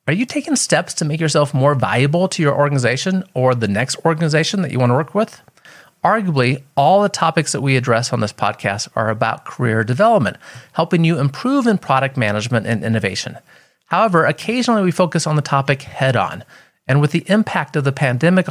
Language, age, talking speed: English, 40-59, 190 wpm